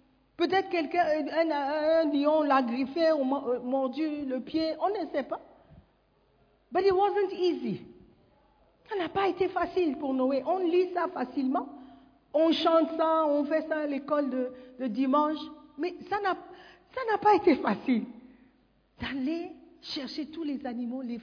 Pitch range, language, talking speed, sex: 260-345 Hz, French, 155 wpm, female